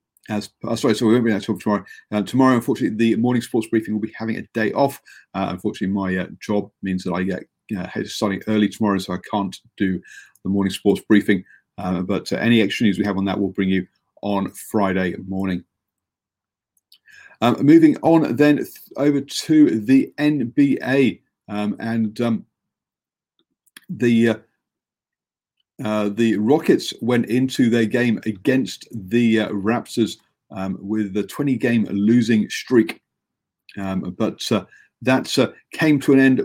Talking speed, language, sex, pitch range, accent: 160 wpm, English, male, 100-125 Hz, British